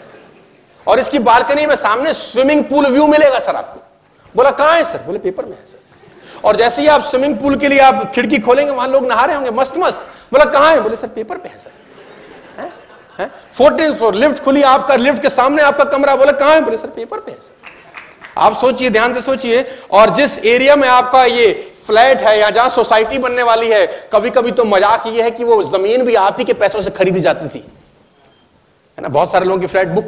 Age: 40-59